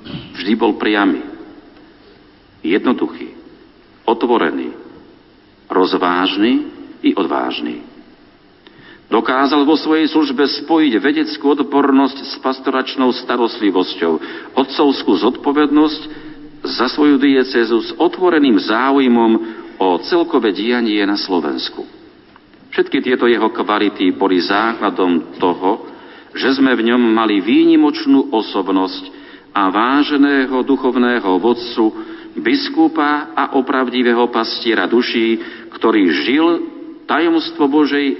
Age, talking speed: 50-69, 90 wpm